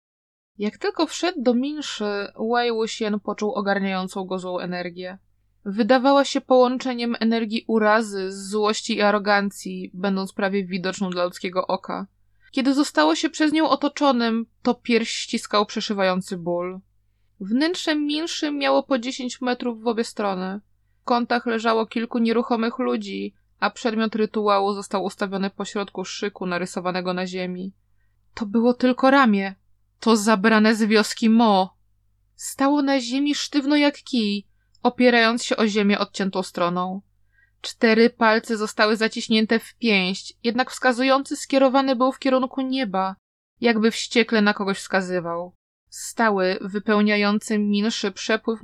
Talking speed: 130 wpm